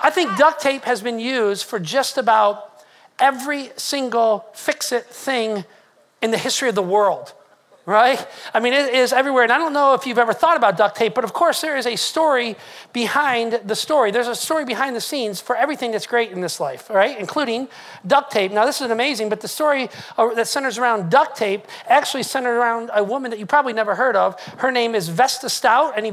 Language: English